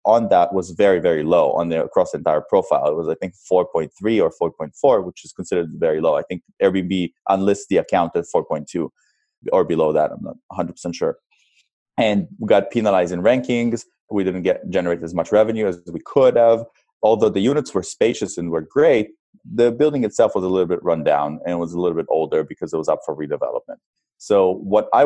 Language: English